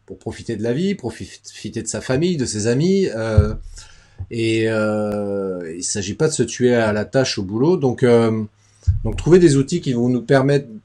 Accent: French